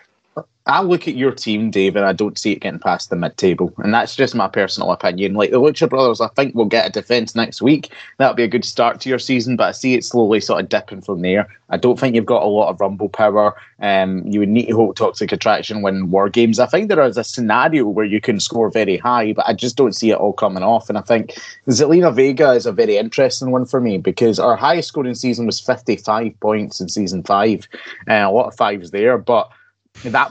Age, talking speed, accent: 20-39, 250 wpm, British